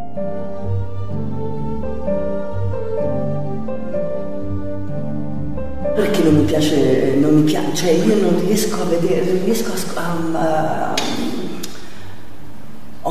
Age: 40-59